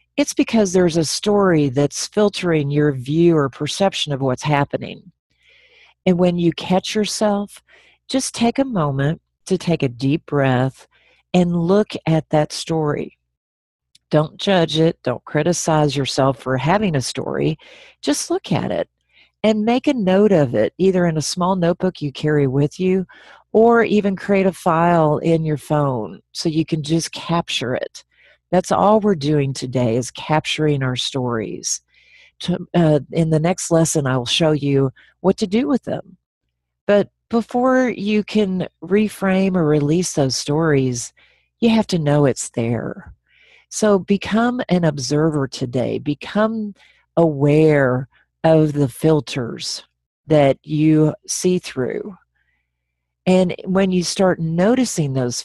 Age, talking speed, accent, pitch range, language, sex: 50-69, 145 wpm, American, 140-195 Hz, English, female